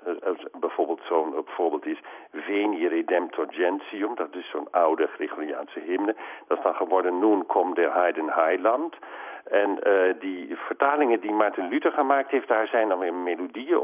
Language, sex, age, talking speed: Dutch, male, 50-69, 155 wpm